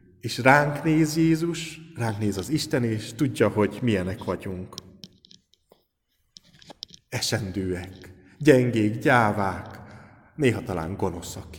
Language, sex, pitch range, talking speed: Hungarian, male, 100-130 Hz, 100 wpm